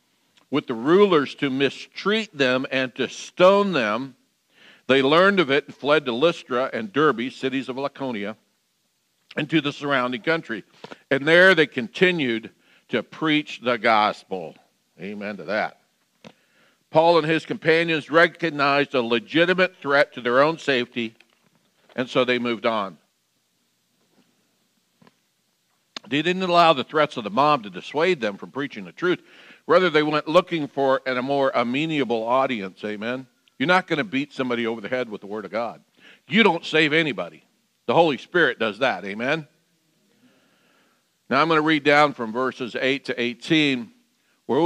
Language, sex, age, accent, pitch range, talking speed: English, male, 60-79, American, 125-165 Hz, 155 wpm